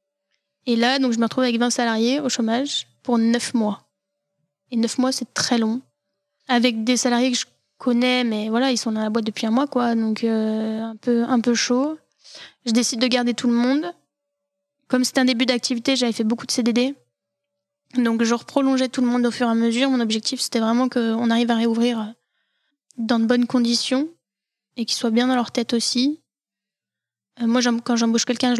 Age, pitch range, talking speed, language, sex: 10-29, 230-255 Hz, 205 wpm, French, female